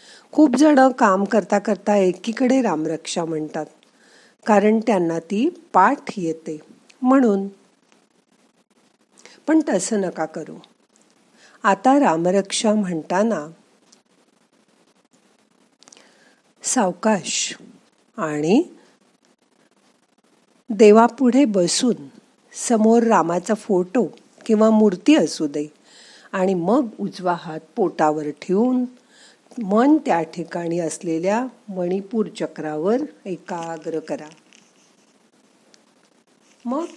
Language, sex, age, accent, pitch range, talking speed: Marathi, female, 50-69, native, 175-250 Hz, 60 wpm